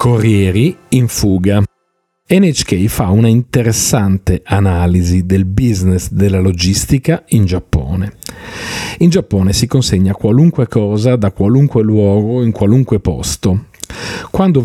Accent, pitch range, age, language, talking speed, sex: native, 90-120 Hz, 40-59, Italian, 110 wpm, male